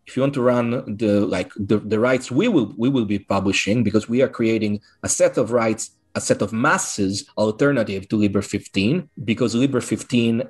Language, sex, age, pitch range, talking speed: Portuguese, male, 30-49, 105-130 Hz, 200 wpm